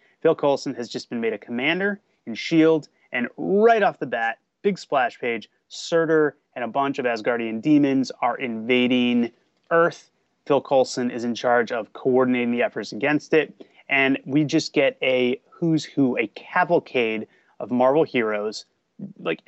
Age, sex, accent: 30-49, male, American